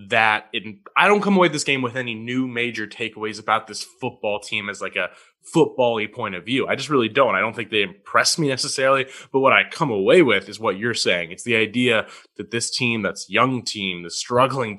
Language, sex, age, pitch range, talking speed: English, male, 20-39, 105-130 Hz, 230 wpm